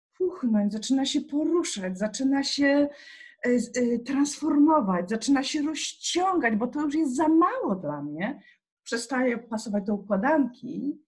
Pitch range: 185-260 Hz